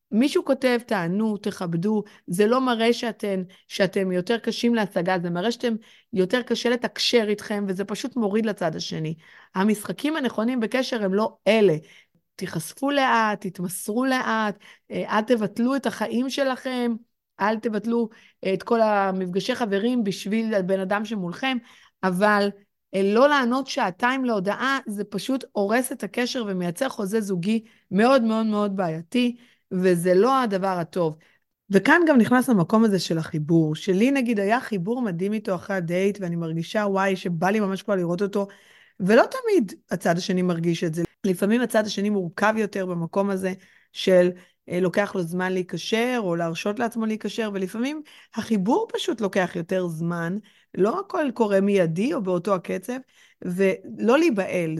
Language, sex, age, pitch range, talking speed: Hebrew, female, 30-49, 185-235 Hz, 145 wpm